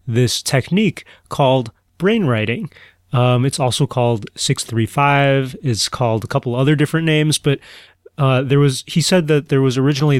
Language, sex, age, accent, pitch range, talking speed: English, male, 30-49, American, 115-135 Hz, 155 wpm